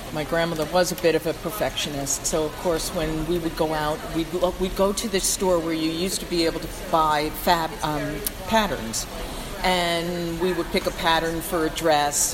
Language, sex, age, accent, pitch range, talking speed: English, female, 50-69, American, 145-175 Hz, 205 wpm